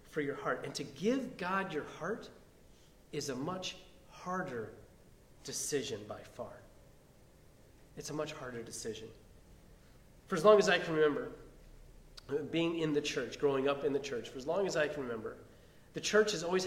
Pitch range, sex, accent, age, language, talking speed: 140-205 Hz, male, American, 30-49, English, 175 wpm